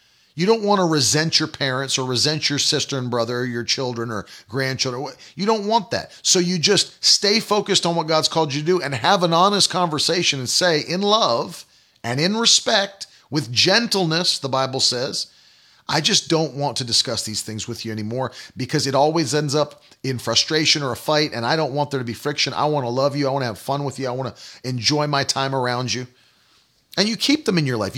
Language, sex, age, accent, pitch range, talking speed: English, male, 40-59, American, 125-170 Hz, 230 wpm